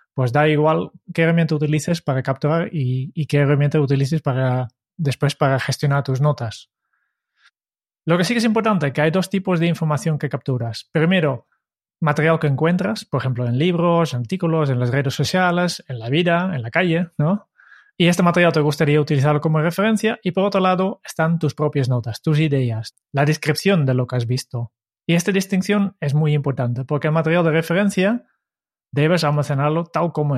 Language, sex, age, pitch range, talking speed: Spanish, male, 20-39, 140-175 Hz, 185 wpm